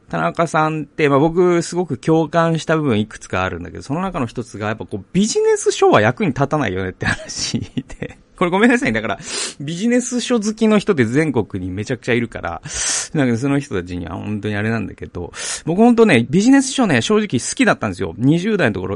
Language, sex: Japanese, male